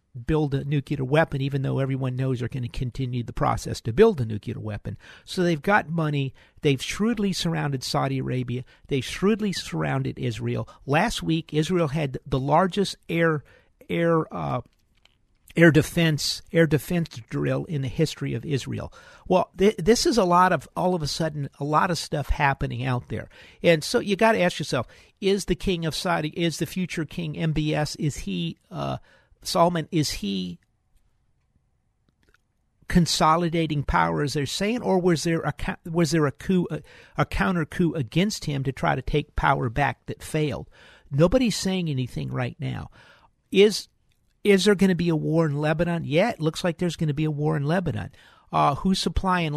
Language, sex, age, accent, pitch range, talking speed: English, male, 50-69, American, 135-175 Hz, 180 wpm